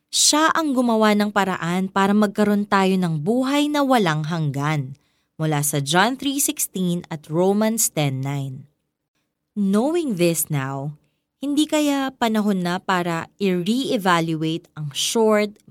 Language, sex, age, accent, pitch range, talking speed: Filipino, female, 20-39, native, 160-215 Hz, 120 wpm